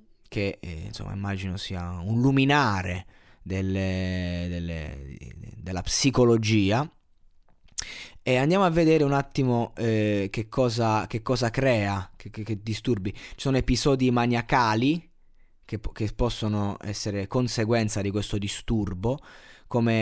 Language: Italian